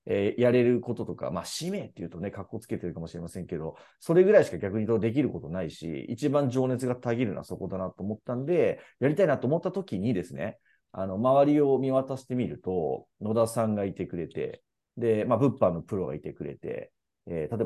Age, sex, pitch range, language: 40-59, male, 95-145 Hz, Japanese